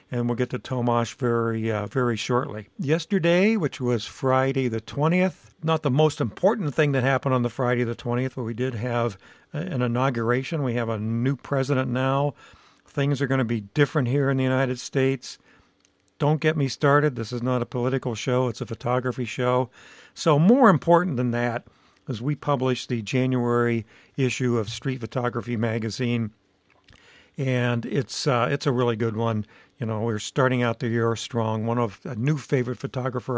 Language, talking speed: English, 180 wpm